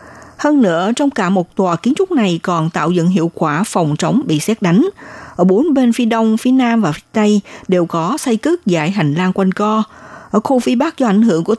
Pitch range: 170-230 Hz